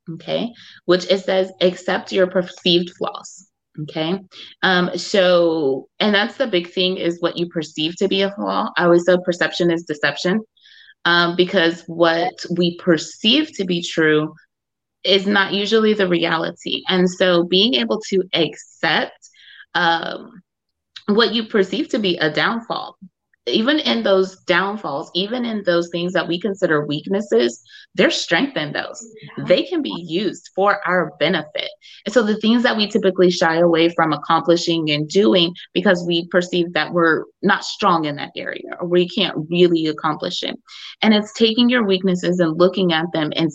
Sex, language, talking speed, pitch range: female, English, 165 wpm, 170-195 Hz